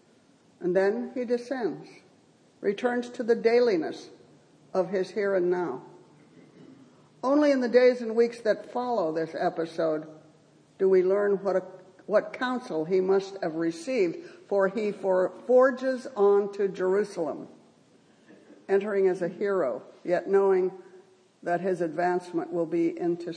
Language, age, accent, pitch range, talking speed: English, 60-79, American, 180-225 Hz, 130 wpm